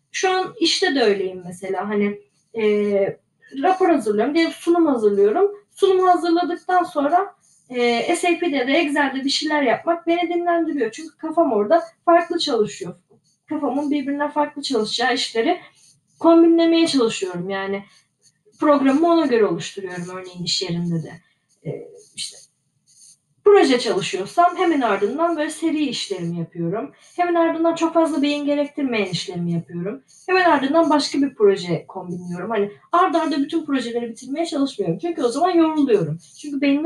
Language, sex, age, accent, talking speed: Turkish, female, 30-49, native, 135 wpm